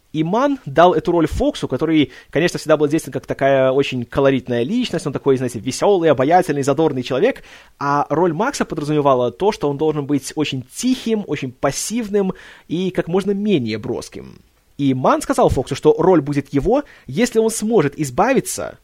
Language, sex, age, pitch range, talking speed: Russian, male, 20-39, 135-185 Hz, 170 wpm